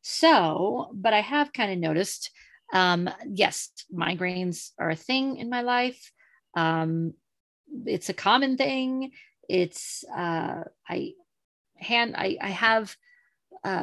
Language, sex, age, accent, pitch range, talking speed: English, female, 40-59, American, 170-250 Hz, 125 wpm